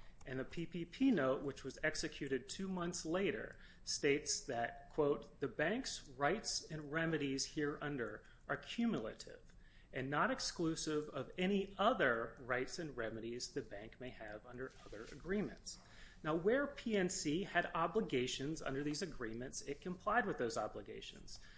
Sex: male